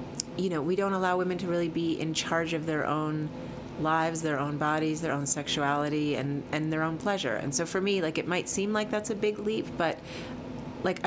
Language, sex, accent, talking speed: English, female, American, 220 wpm